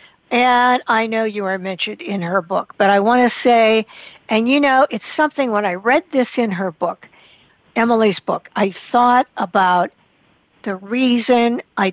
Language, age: English, 60-79